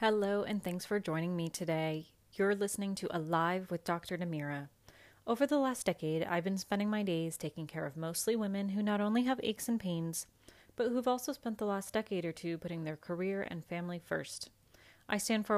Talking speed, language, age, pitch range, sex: 205 wpm, English, 30-49, 165-205 Hz, female